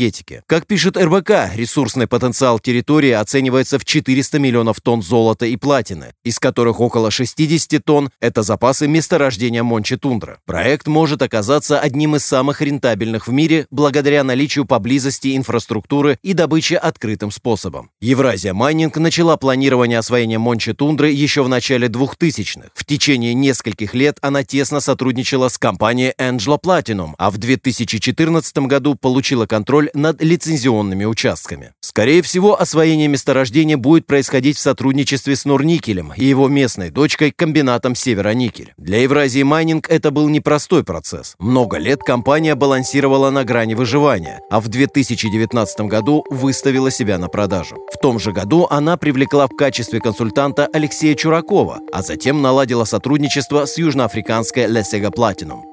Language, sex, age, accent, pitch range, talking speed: Russian, male, 30-49, native, 115-145 Hz, 140 wpm